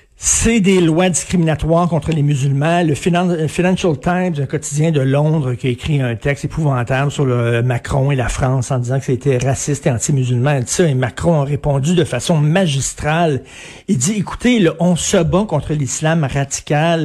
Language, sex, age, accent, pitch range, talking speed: French, male, 60-79, Canadian, 140-185 Hz, 185 wpm